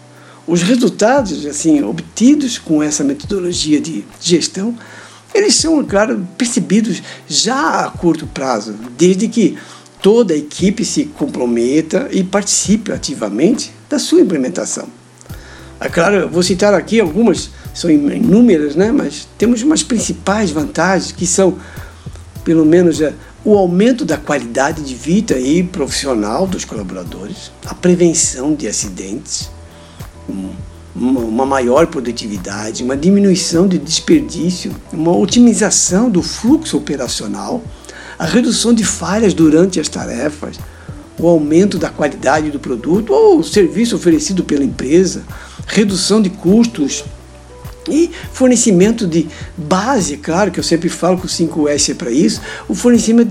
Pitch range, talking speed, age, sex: 150-225 Hz, 125 wpm, 60-79, male